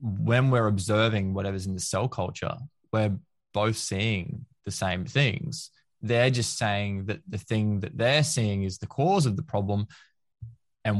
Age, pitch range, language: 20-39, 105-140 Hz, English